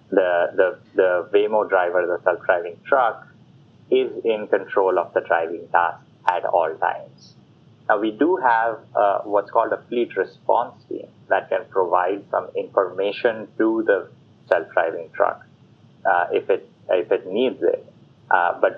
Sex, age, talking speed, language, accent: male, 30-49, 150 wpm, English, Indian